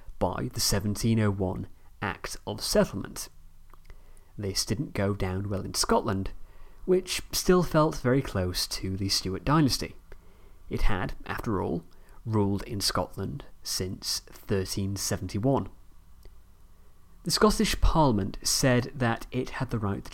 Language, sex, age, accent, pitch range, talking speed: English, male, 30-49, British, 95-120 Hz, 120 wpm